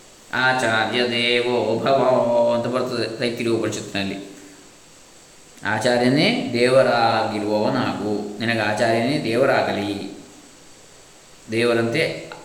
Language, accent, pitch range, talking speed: Kannada, native, 115-135 Hz, 65 wpm